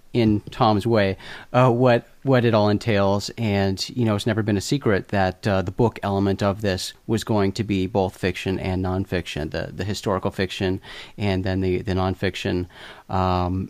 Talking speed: 185 wpm